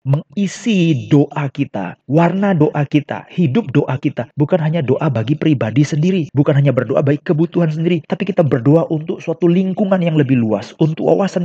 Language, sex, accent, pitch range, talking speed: Indonesian, male, native, 140-180 Hz, 170 wpm